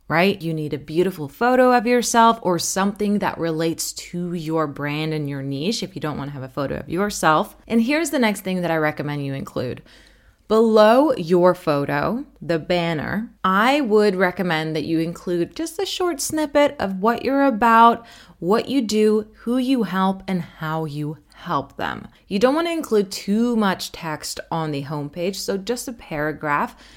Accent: American